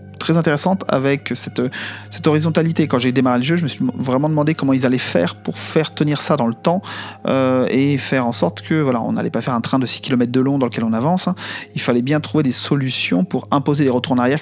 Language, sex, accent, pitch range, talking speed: French, male, French, 125-155 Hz, 260 wpm